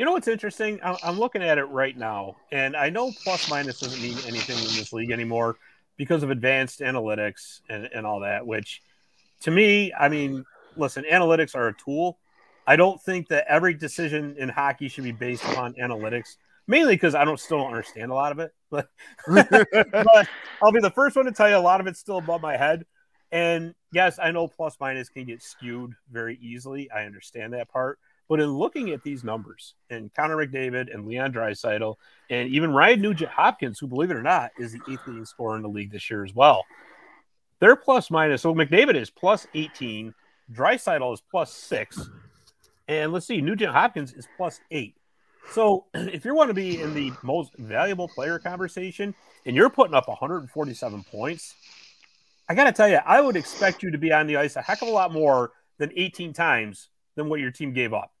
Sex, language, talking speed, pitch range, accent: male, English, 195 wpm, 125-180 Hz, American